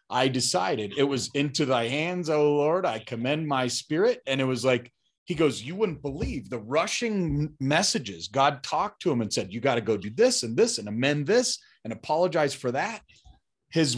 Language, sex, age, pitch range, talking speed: English, male, 30-49, 120-160 Hz, 200 wpm